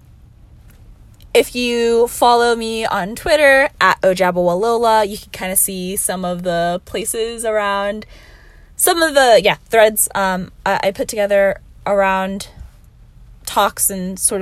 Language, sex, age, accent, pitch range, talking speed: English, female, 20-39, American, 185-245 Hz, 135 wpm